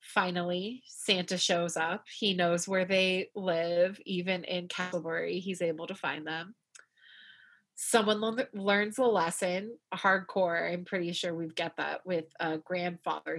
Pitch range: 175-205 Hz